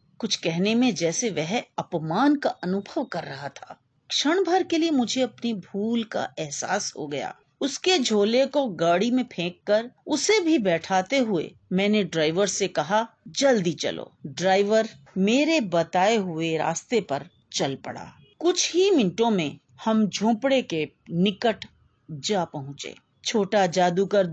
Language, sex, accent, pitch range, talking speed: Hindi, female, native, 175-250 Hz, 145 wpm